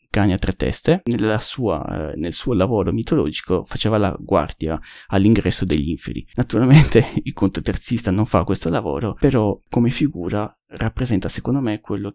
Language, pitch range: Italian, 95-120 Hz